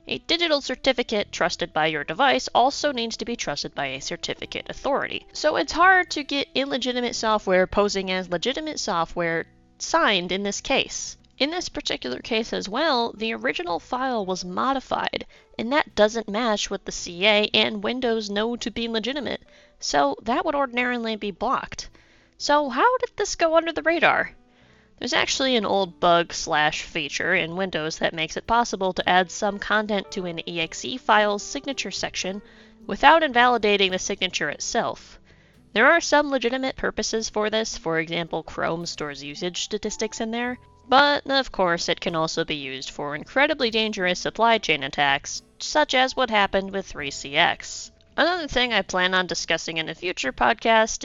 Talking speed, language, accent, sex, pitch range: 165 wpm, English, American, female, 175-250 Hz